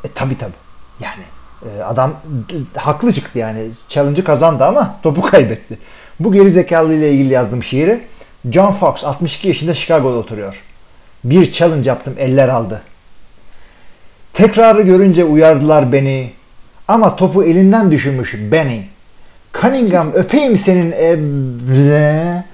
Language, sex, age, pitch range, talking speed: Turkish, male, 40-59, 130-185 Hz, 115 wpm